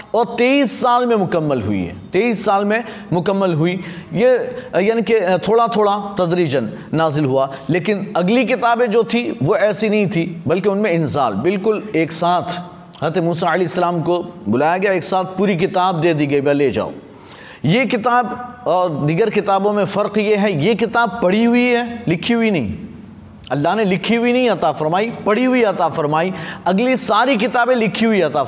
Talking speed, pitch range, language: 175 wpm, 165-215 Hz, Hindi